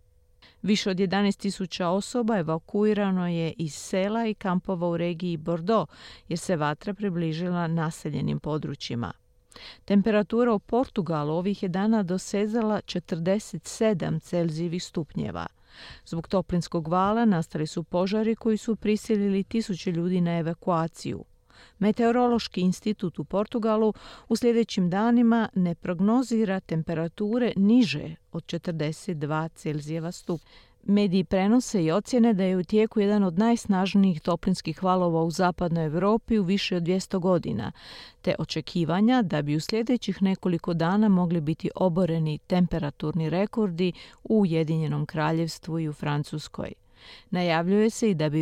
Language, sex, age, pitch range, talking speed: Croatian, female, 40-59, 165-210 Hz, 125 wpm